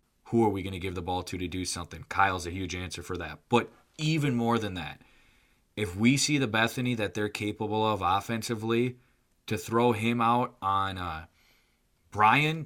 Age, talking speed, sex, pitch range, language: 20-39, 190 wpm, male, 100-120 Hz, English